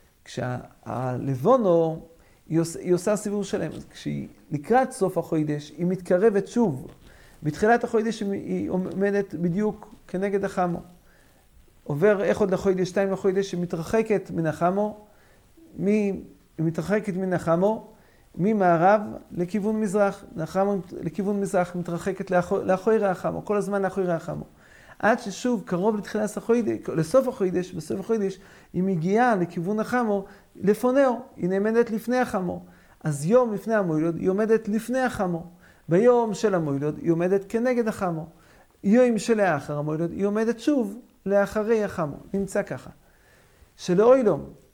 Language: English